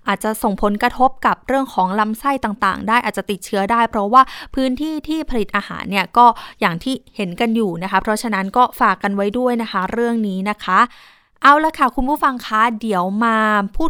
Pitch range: 205-260 Hz